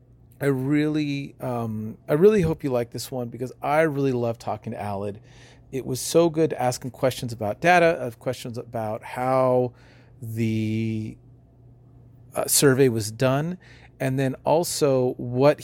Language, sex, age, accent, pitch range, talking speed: English, male, 40-59, American, 120-140 Hz, 155 wpm